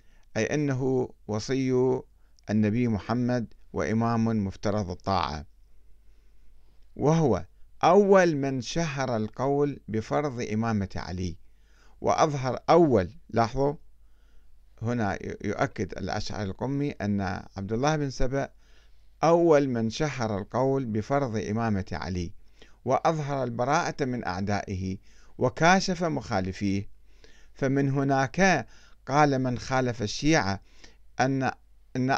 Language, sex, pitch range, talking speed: Arabic, male, 100-140 Hz, 90 wpm